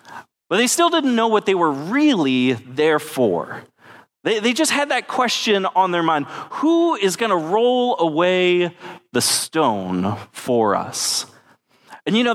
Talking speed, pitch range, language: 160 wpm, 145-215 Hz, English